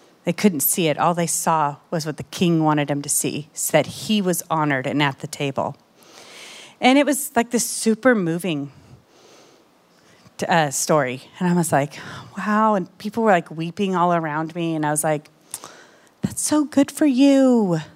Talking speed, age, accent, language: 185 wpm, 30-49, American, English